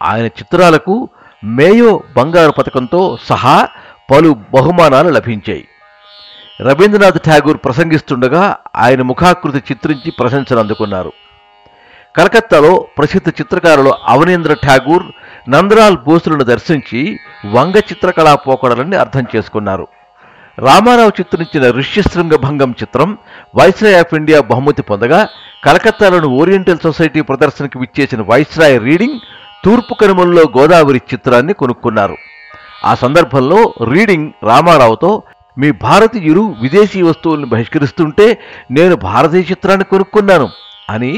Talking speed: 95 wpm